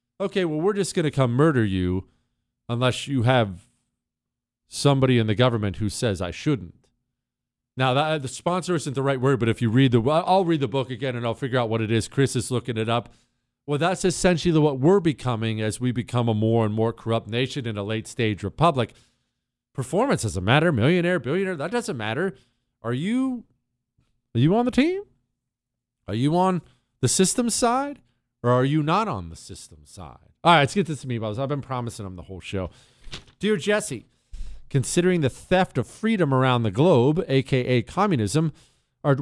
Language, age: English, 40-59